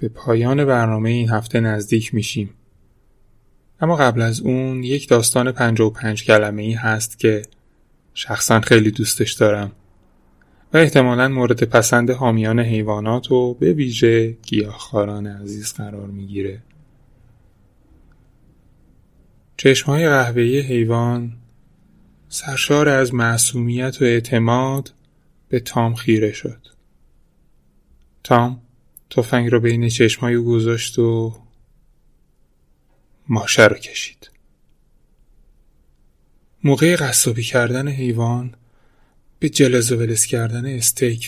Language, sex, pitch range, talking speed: Persian, male, 110-130 Hz, 95 wpm